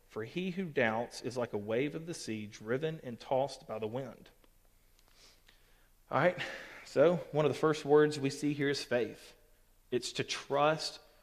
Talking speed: 175 wpm